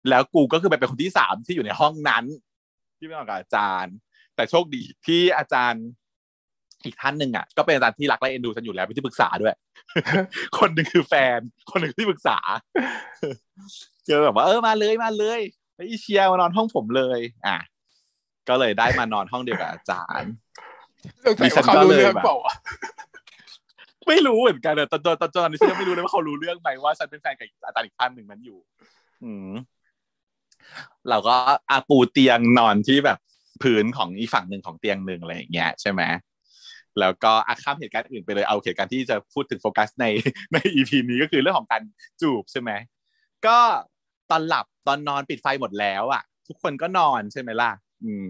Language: Thai